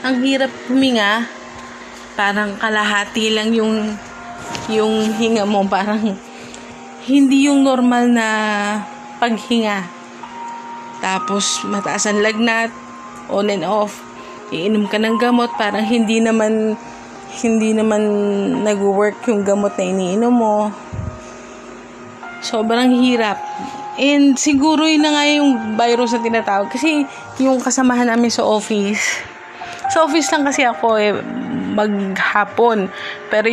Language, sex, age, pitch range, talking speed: Filipino, female, 20-39, 205-245 Hz, 115 wpm